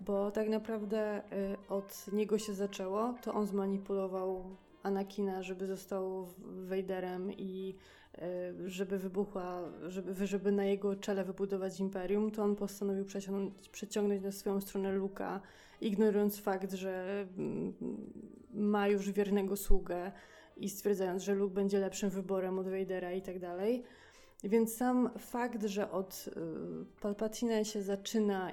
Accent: native